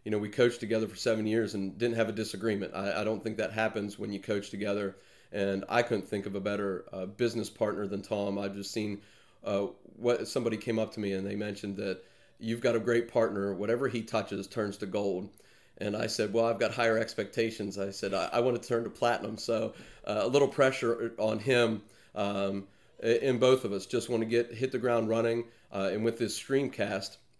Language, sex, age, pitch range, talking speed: English, male, 40-59, 100-115 Hz, 225 wpm